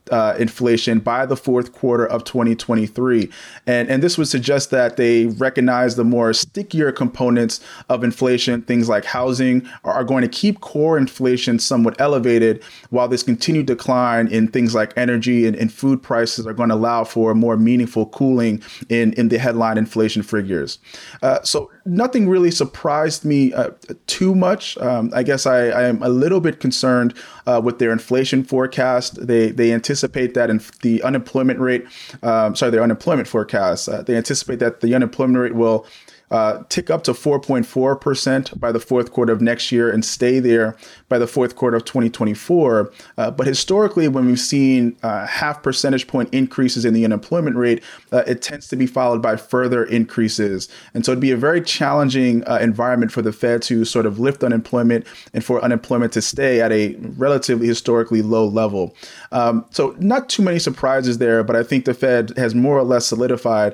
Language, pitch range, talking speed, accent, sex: English, 115-130 Hz, 185 wpm, American, male